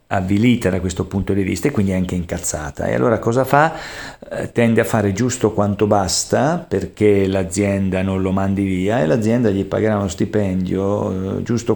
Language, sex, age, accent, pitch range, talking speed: Italian, male, 50-69, native, 95-110 Hz, 175 wpm